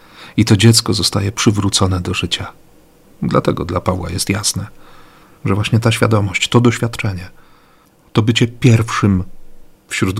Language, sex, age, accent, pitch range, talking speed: Polish, male, 40-59, native, 95-115 Hz, 130 wpm